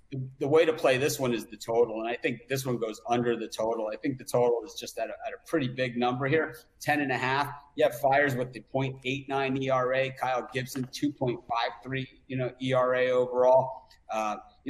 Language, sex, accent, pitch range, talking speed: English, male, American, 120-135 Hz, 210 wpm